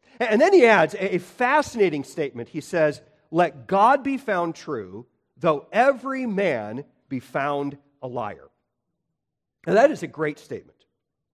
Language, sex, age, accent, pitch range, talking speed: English, male, 40-59, American, 140-225 Hz, 145 wpm